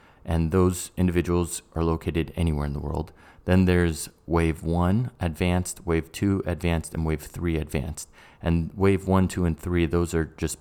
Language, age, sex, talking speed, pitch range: English, 30-49, male, 170 wpm, 75-90 Hz